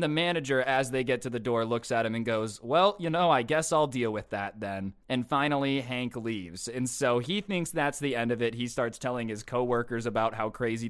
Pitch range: 110-135 Hz